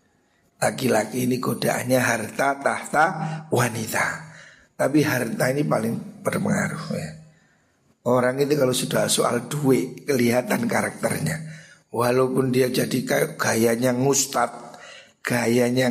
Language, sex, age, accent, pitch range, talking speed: Indonesian, male, 50-69, native, 130-165 Hz, 100 wpm